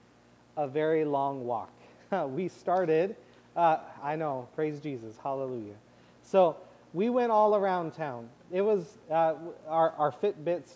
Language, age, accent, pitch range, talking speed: English, 30-49, American, 145-185 Hz, 135 wpm